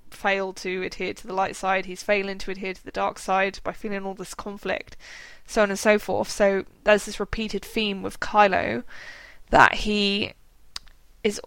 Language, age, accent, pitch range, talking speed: English, 20-39, British, 190-225 Hz, 185 wpm